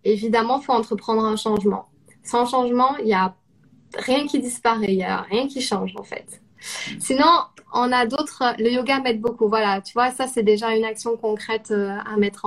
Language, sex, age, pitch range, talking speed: French, female, 20-39, 220-255 Hz, 195 wpm